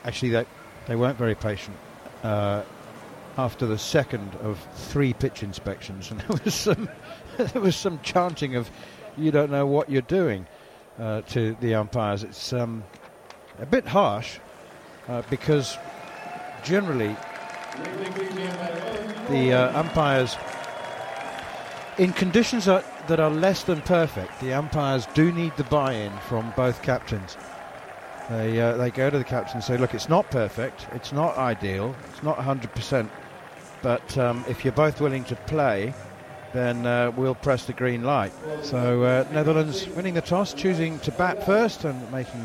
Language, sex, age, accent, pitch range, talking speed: English, male, 50-69, British, 115-165 Hz, 145 wpm